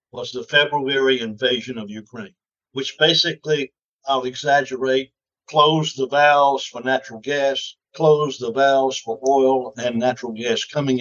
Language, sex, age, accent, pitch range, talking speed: English, male, 60-79, American, 125-150 Hz, 135 wpm